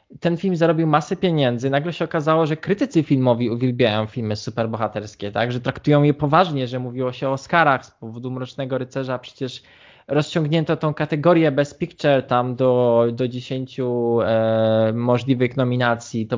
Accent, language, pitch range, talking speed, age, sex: native, Polish, 120-145 Hz, 150 wpm, 20-39, male